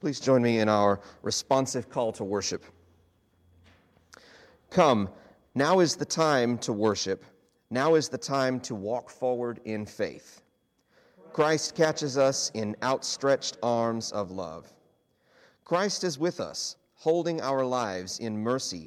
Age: 40-59